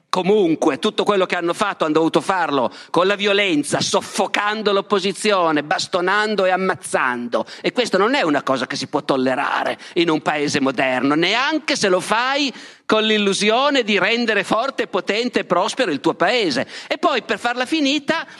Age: 40-59